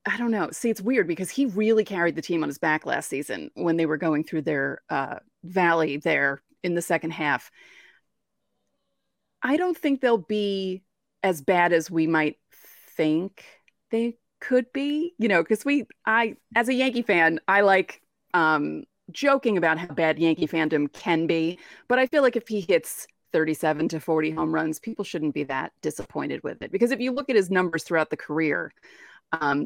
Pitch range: 160-220 Hz